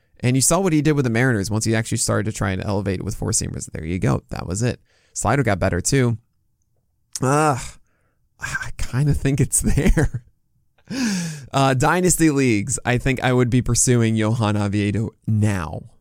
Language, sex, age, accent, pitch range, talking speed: English, male, 20-39, American, 110-135 Hz, 185 wpm